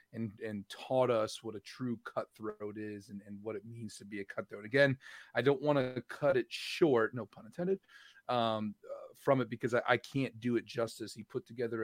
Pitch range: 105-120 Hz